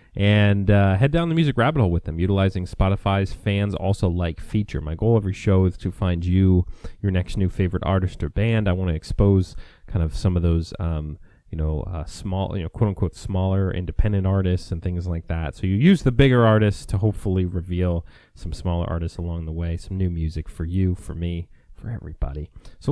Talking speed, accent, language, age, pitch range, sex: 215 wpm, American, English, 30-49, 85-100 Hz, male